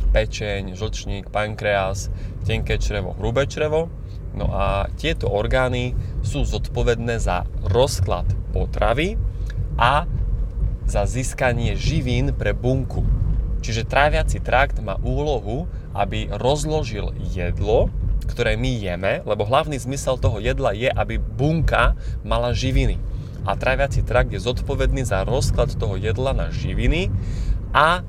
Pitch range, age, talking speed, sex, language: 100-130 Hz, 20-39, 115 wpm, male, Slovak